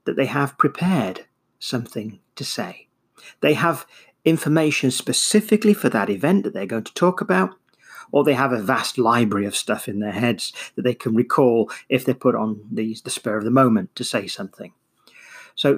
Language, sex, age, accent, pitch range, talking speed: English, male, 40-59, British, 115-180 Hz, 185 wpm